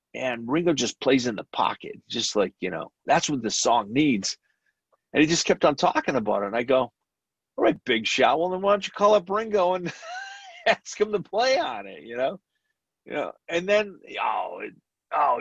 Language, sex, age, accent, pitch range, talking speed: English, male, 40-59, American, 105-150 Hz, 215 wpm